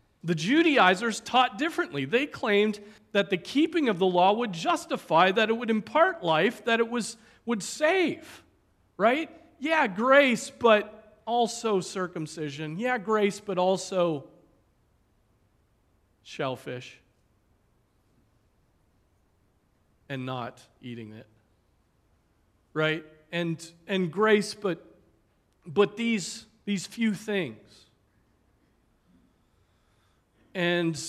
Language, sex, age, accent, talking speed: English, male, 40-59, American, 95 wpm